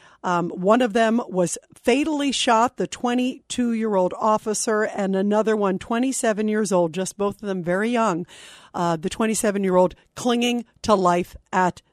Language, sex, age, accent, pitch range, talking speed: English, female, 50-69, American, 200-255 Hz, 145 wpm